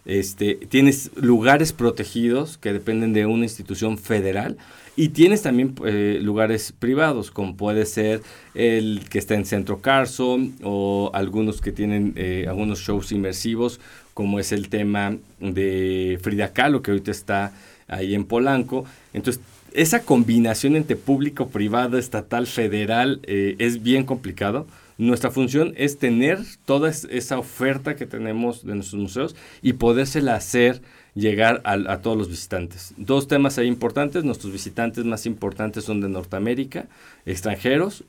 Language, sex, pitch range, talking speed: English, male, 100-125 Hz, 145 wpm